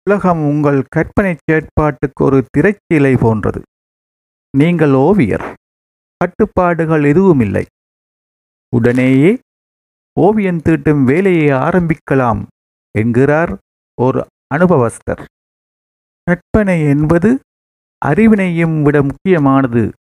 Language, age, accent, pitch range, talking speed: Tamil, 50-69, native, 125-180 Hz, 70 wpm